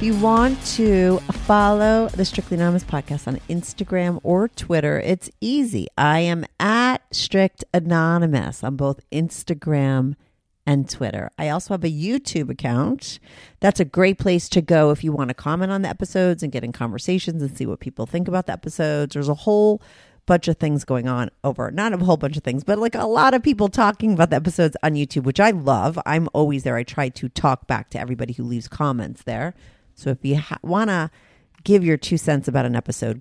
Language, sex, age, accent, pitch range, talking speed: English, female, 40-59, American, 145-210 Hz, 205 wpm